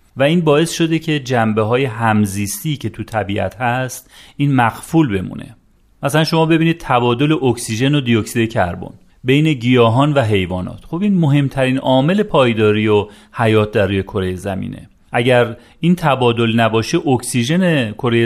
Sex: male